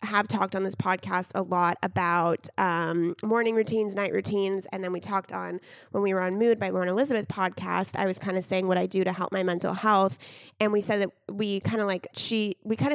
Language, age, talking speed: English, 20-39, 235 wpm